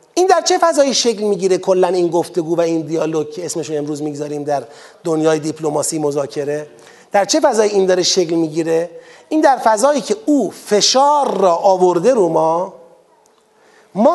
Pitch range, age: 200-290 Hz, 40-59